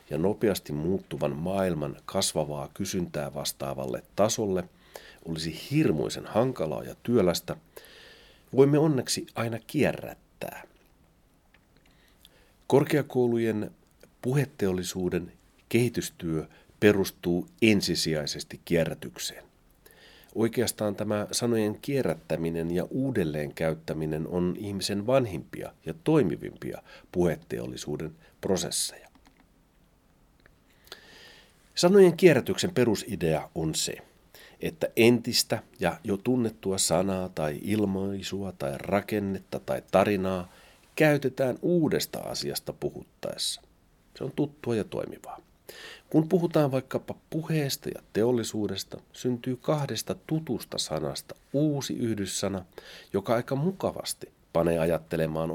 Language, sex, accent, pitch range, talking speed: Finnish, male, native, 90-130 Hz, 85 wpm